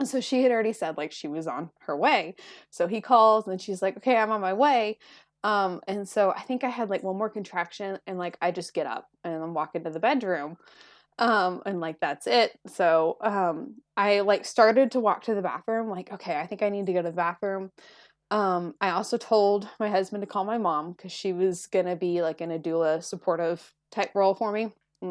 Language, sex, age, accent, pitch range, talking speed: English, female, 20-39, American, 180-225 Hz, 235 wpm